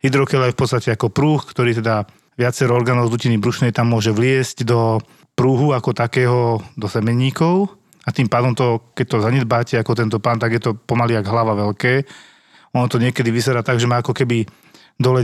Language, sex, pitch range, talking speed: Slovak, male, 115-135 Hz, 190 wpm